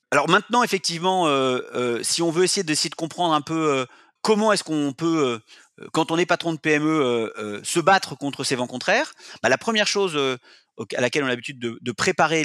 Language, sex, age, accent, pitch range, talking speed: French, male, 30-49, French, 130-175 Hz, 235 wpm